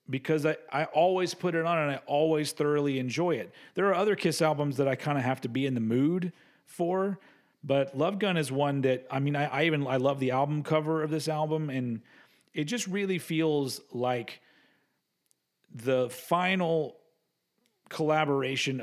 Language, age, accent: English, 40-59, American